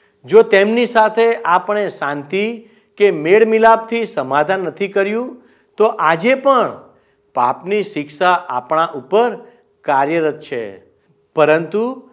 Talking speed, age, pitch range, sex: 100 wpm, 50-69, 155-225 Hz, male